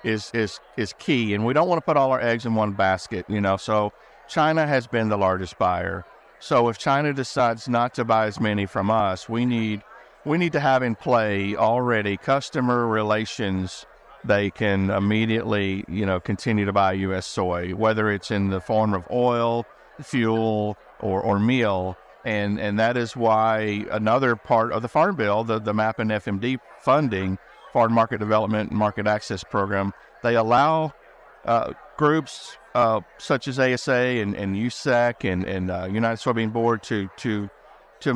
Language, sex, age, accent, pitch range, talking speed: English, male, 50-69, American, 100-125 Hz, 175 wpm